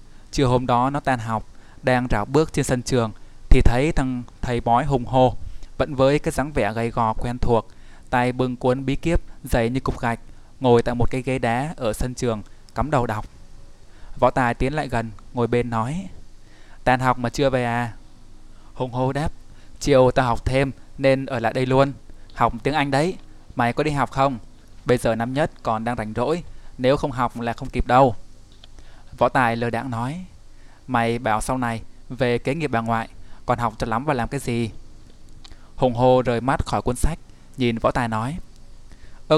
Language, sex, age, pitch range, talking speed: Vietnamese, male, 20-39, 115-130 Hz, 205 wpm